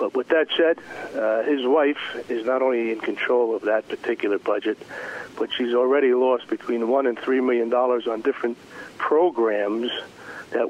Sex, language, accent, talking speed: male, English, American, 165 wpm